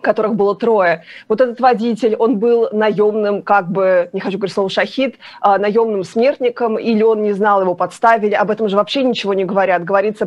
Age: 20-39